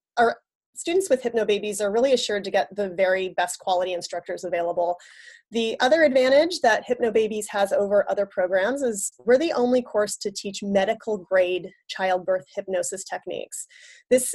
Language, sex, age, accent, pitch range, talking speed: English, female, 30-49, American, 195-245 Hz, 155 wpm